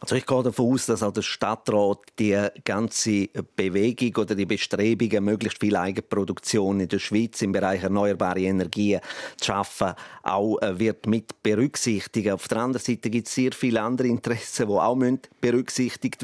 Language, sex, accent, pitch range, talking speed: German, male, Austrian, 105-125 Hz, 170 wpm